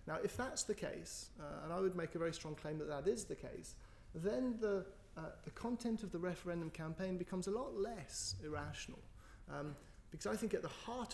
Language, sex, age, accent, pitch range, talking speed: English, male, 30-49, British, 135-175 Hz, 210 wpm